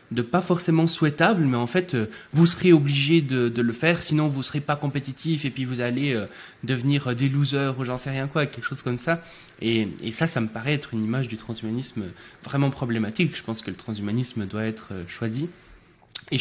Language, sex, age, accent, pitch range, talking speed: French, male, 20-39, French, 110-140 Hz, 215 wpm